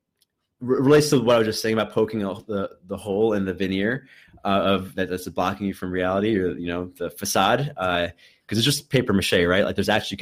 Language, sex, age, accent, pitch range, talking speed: English, male, 20-39, American, 100-120 Hz, 230 wpm